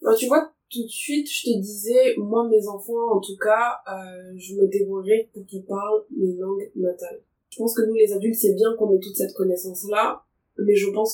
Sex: female